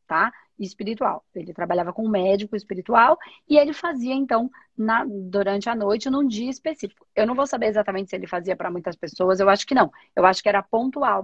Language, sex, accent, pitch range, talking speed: Portuguese, female, Brazilian, 190-240 Hz, 210 wpm